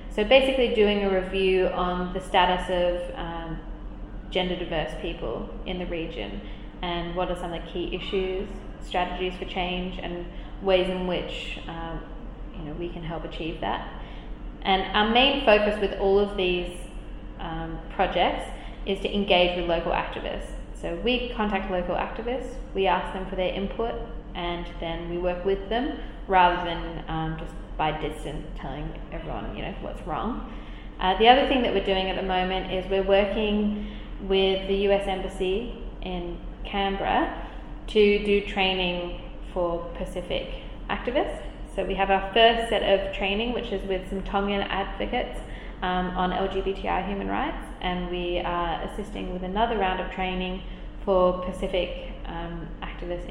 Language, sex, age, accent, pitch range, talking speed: English, female, 20-39, Australian, 175-195 Hz, 160 wpm